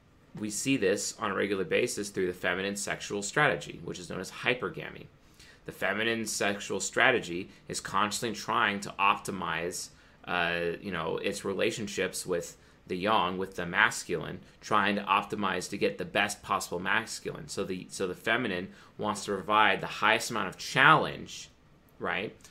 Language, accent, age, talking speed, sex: English, American, 30-49, 160 wpm, male